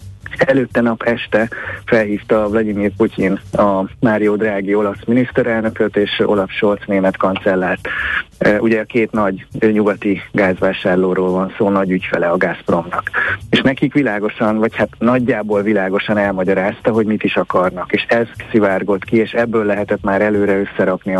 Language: Hungarian